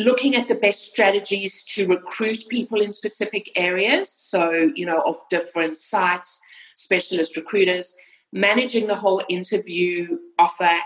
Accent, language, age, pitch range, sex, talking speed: British, English, 40-59, 165-210 Hz, female, 135 wpm